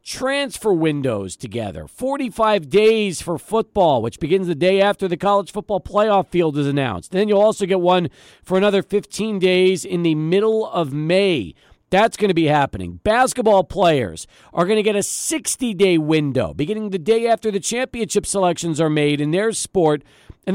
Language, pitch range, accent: English, 170-215 Hz, American